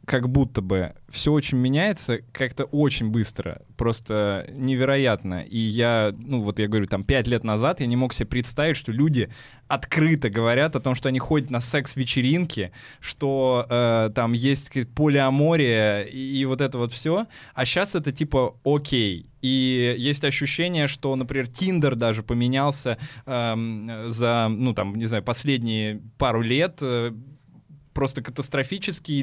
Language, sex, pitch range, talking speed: Russian, male, 120-145 Hz, 150 wpm